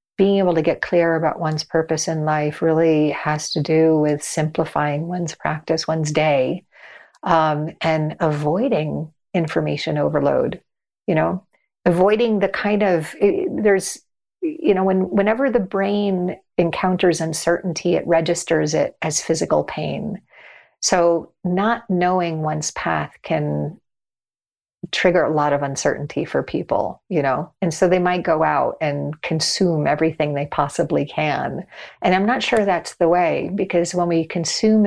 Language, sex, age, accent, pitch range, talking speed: English, female, 40-59, American, 150-180 Hz, 145 wpm